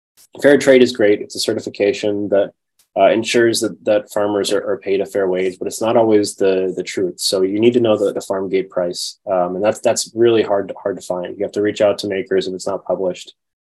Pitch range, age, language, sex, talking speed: 95-115 Hz, 20-39, English, male, 250 wpm